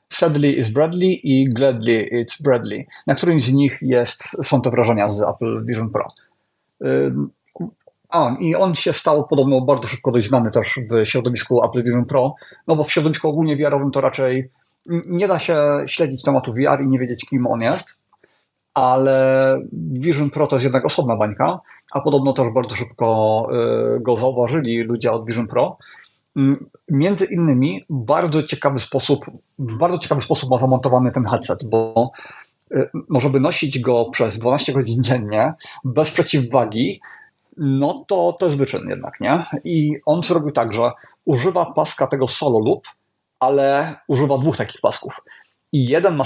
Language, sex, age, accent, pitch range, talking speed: Polish, male, 30-49, native, 120-150 Hz, 160 wpm